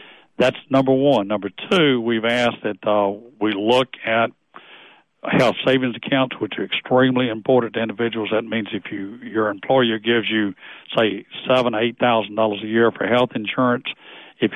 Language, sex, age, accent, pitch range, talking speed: English, male, 60-79, American, 105-120 Hz, 165 wpm